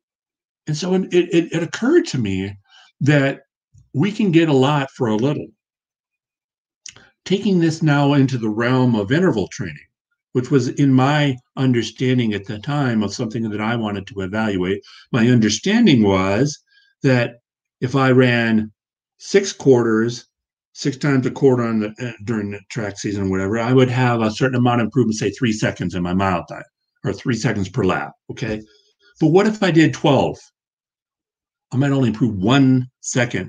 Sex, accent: male, American